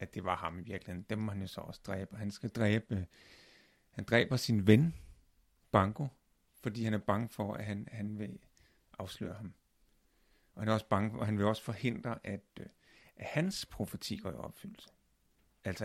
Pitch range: 95-120 Hz